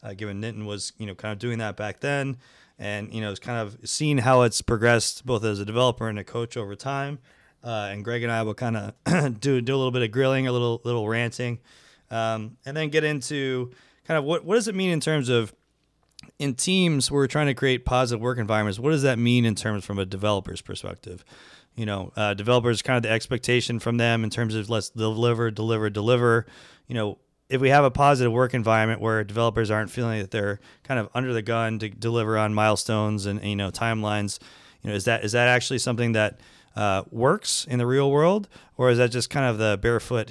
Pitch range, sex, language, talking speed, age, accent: 110-135 Hz, male, English, 230 wpm, 20-39, American